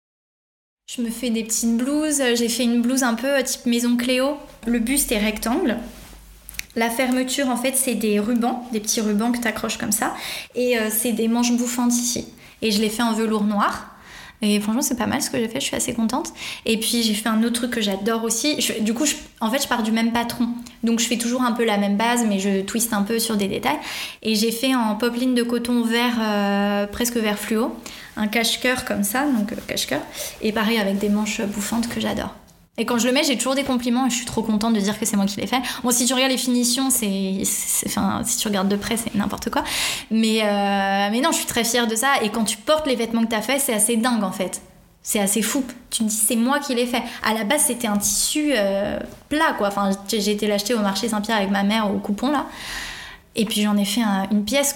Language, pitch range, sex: French, 215-250 Hz, female